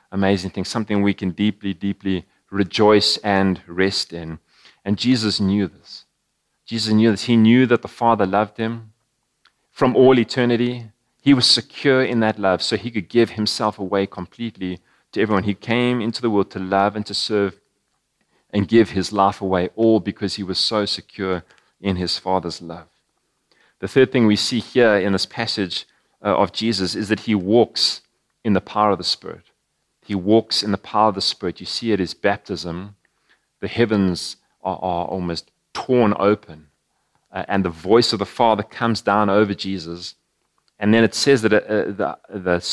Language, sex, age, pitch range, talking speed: English, male, 30-49, 90-110 Hz, 180 wpm